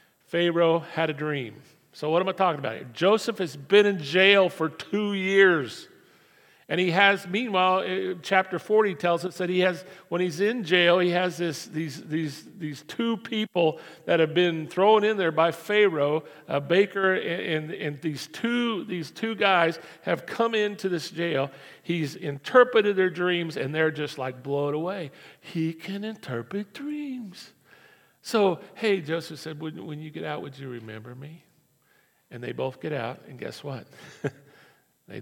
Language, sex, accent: English, male, American